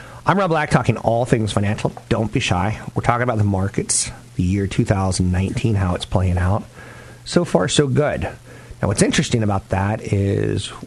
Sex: male